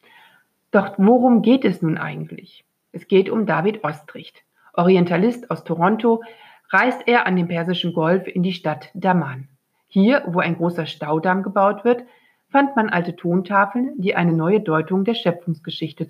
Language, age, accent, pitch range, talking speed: German, 50-69, German, 170-215 Hz, 155 wpm